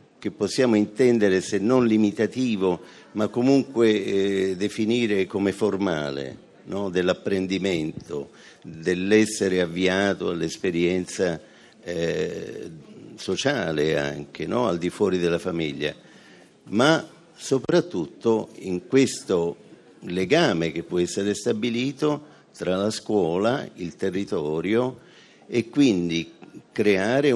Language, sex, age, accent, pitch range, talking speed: Italian, male, 50-69, native, 85-110 Hz, 90 wpm